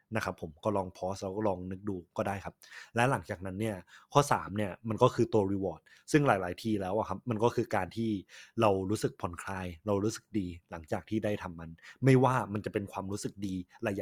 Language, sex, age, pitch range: Thai, male, 20-39, 100-120 Hz